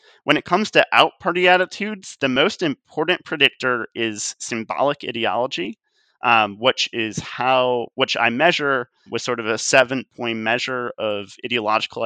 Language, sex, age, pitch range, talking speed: English, male, 30-49, 110-140 Hz, 150 wpm